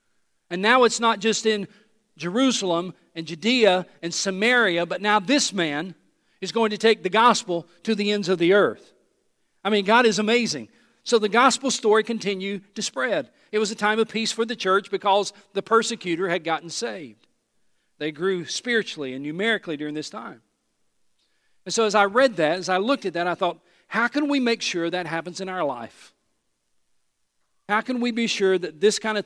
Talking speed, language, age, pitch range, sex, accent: 195 wpm, English, 50-69, 165-215 Hz, male, American